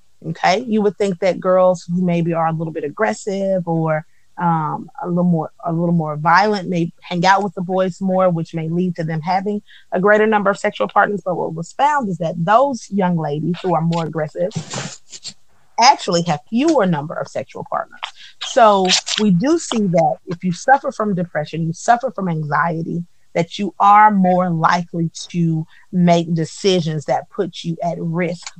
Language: English